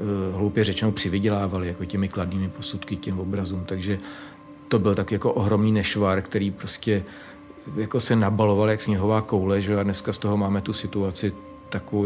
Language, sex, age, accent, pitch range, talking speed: Czech, male, 40-59, native, 100-110 Hz, 165 wpm